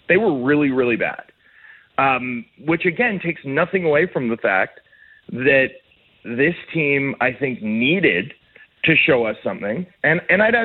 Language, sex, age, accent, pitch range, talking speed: English, male, 40-59, American, 140-220 Hz, 150 wpm